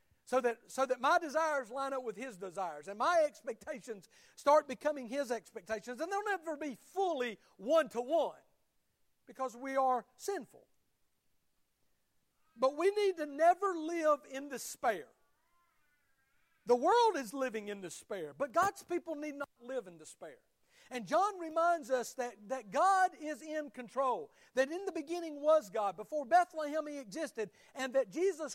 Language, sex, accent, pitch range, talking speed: English, male, American, 255-330 Hz, 155 wpm